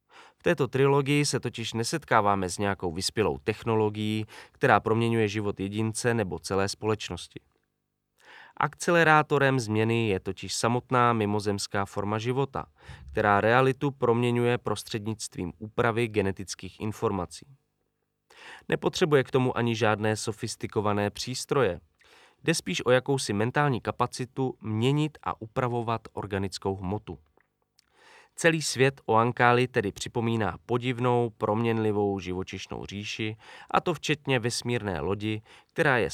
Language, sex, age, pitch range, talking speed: Czech, male, 20-39, 105-130 Hz, 110 wpm